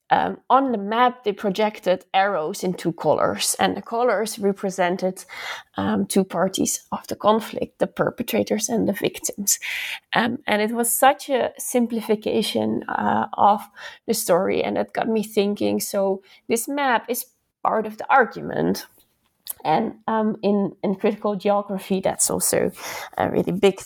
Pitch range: 190-230 Hz